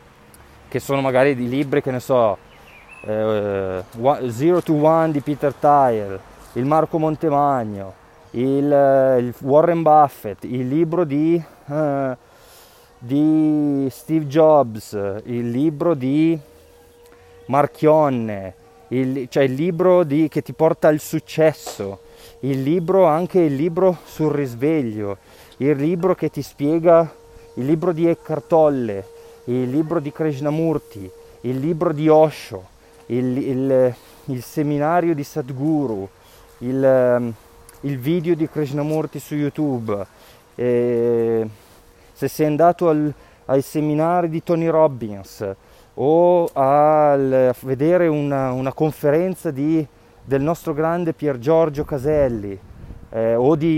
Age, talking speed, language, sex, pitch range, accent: 20-39, 115 wpm, Italian, male, 120-155 Hz, native